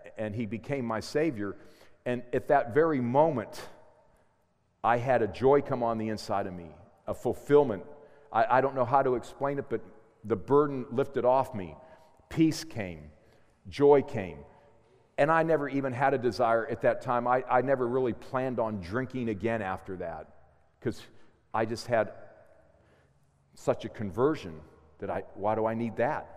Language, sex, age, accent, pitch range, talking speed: English, male, 50-69, American, 110-140 Hz, 170 wpm